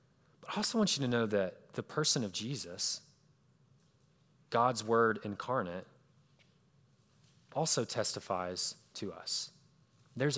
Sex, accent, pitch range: male, American, 110-140 Hz